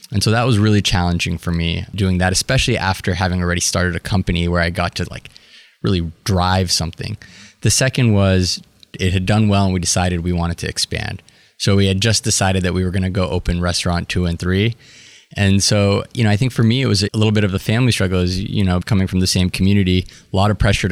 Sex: male